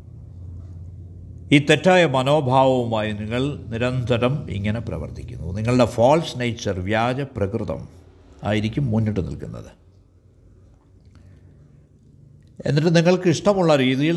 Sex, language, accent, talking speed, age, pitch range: male, Malayalam, native, 75 wpm, 60-79, 90-130 Hz